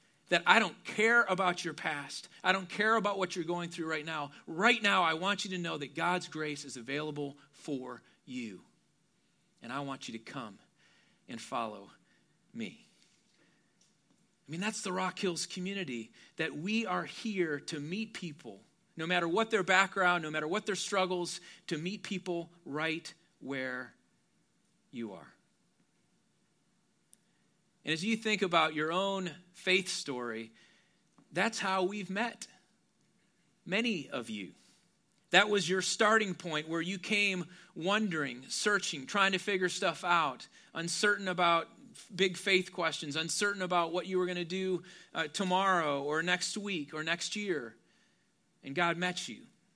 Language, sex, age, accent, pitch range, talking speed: English, male, 40-59, American, 160-205 Hz, 150 wpm